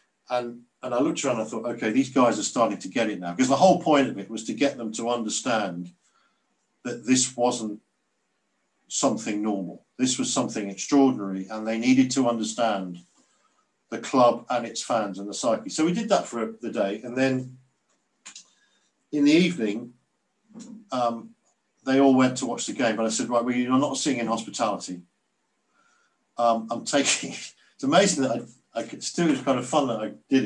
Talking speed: 195 wpm